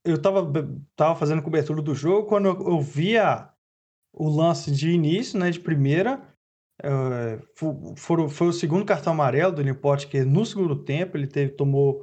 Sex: male